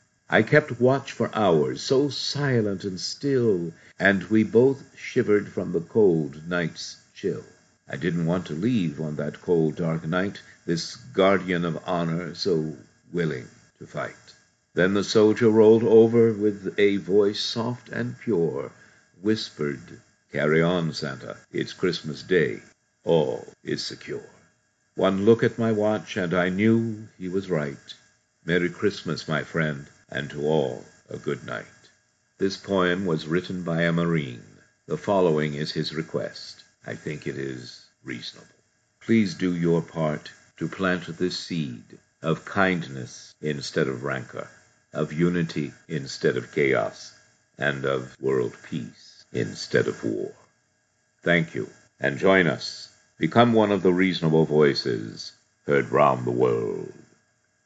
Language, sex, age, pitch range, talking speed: English, male, 60-79, 80-105 Hz, 140 wpm